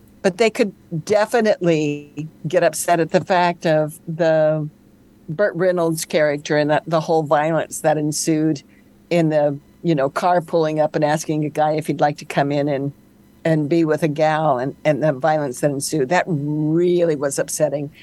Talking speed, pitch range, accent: 180 wpm, 155-180 Hz, American